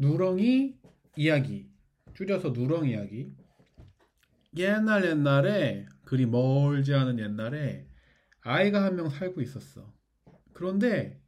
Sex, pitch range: male, 100-155 Hz